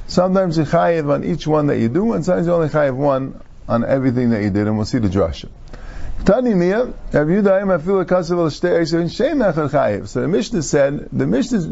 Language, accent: English, American